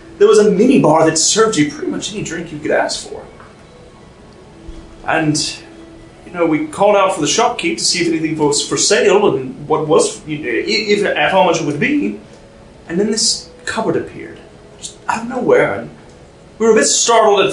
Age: 30-49